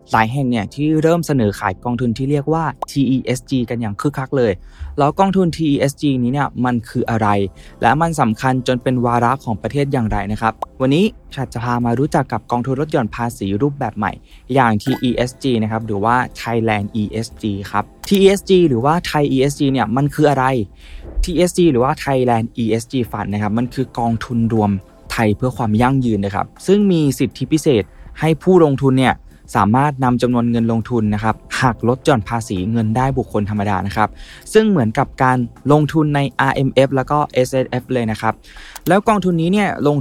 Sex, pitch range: male, 115-140 Hz